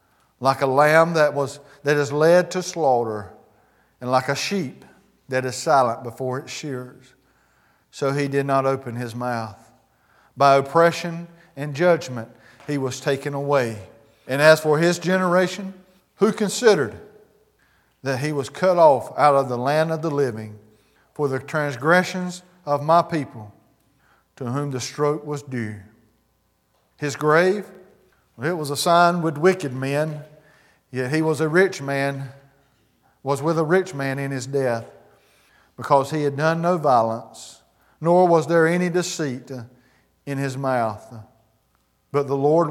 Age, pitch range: 50-69, 130-165 Hz